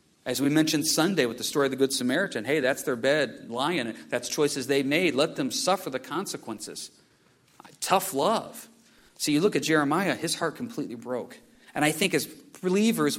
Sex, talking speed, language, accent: male, 185 wpm, English, American